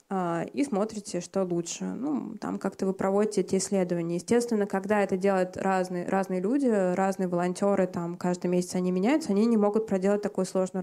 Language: Russian